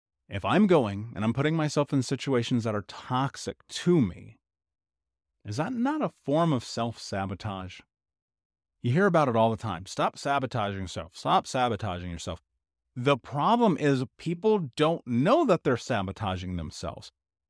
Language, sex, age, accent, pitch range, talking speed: English, male, 30-49, American, 95-145 Hz, 150 wpm